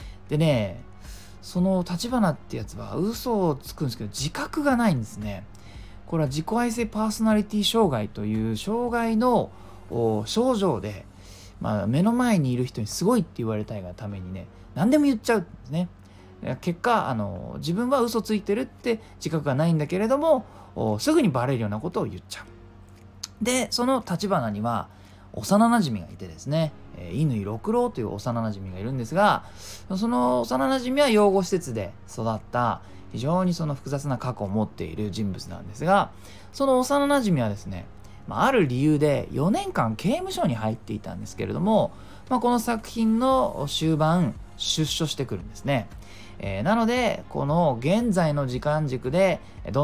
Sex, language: male, Japanese